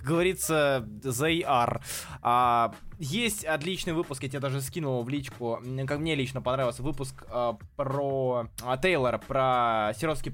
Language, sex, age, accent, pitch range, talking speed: Russian, male, 20-39, native, 130-185 Hz, 145 wpm